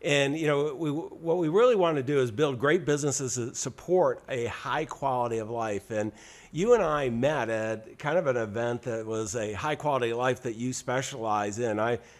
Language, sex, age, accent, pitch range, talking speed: English, male, 50-69, American, 110-140 Hz, 205 wpm